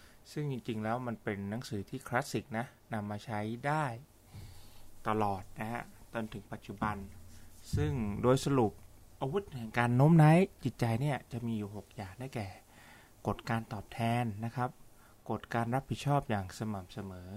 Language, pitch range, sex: Thai, 105-130 Hz, male